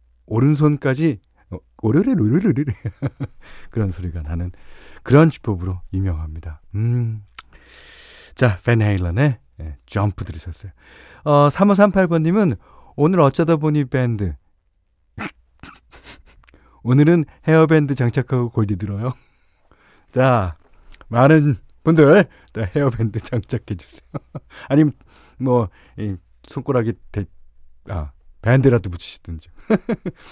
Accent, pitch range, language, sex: native, 90-145 Hz, Korean, male